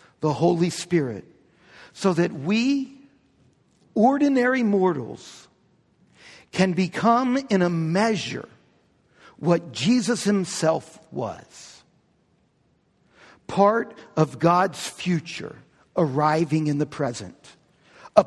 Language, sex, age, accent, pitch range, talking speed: English, male, 60-79, American, 170-220 Hz, 85 wpm